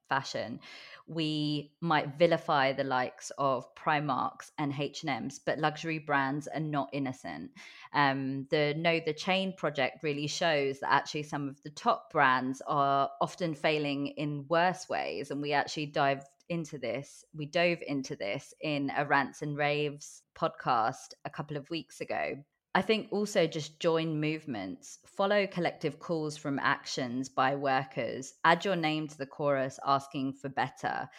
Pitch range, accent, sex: 140-170 Hz, British, female